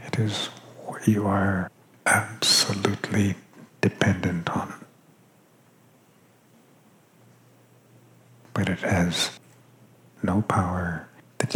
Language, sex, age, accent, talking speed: English, male, 60-79, American, 75 wpm